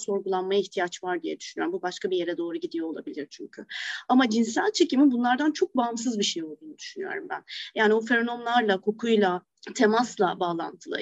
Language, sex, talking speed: Turkish, female, 165 wpm